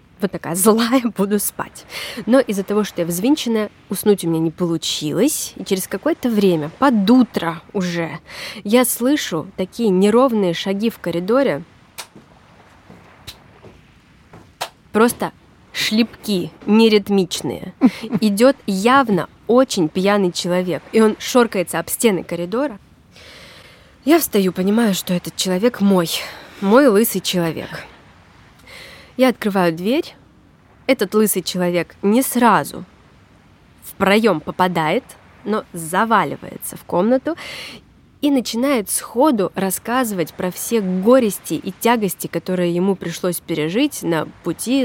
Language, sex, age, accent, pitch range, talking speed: Russian, female, 20-39, native, 180-240 Hz, 110 wpm